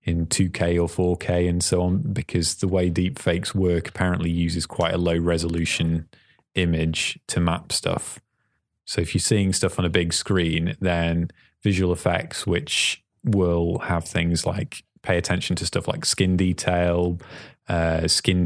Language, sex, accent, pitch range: English, male, British, 85-95 Hz